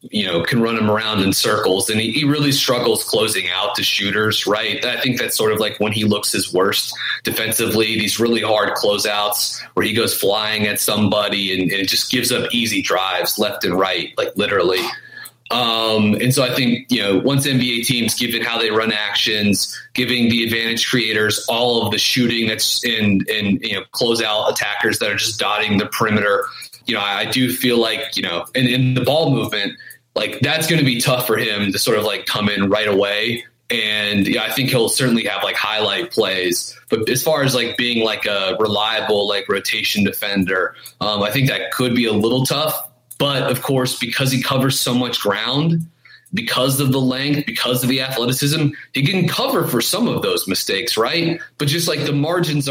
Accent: American